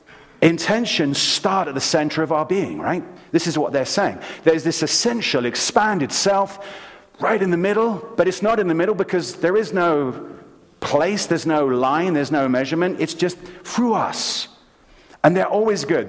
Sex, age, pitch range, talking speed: male, 40-59, 145-200 Hz, 180 wpm